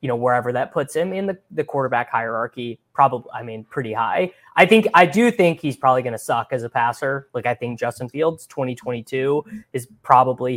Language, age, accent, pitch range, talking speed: English, 20-39, American, 120-150 Hz, 210 wpm